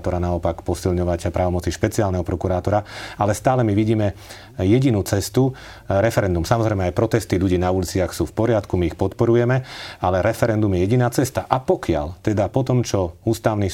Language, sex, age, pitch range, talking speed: Slovak, male, 40-59, 85-105 Hz, 160 wpm